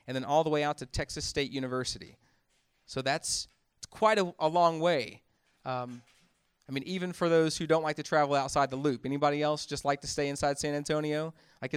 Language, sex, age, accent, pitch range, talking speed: English, male, 30-49, American, 120-150 Hz, 210 wpm